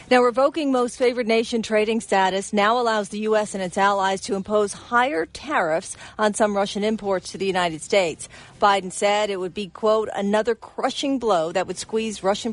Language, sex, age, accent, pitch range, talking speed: English, female, 40-59, American, 195-225 Hz, 185 wpm